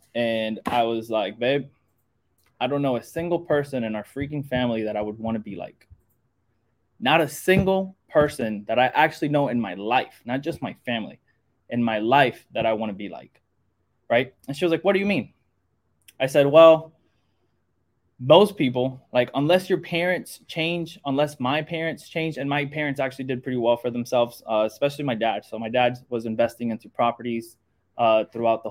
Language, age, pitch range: English, 20-39, 115-145 Hz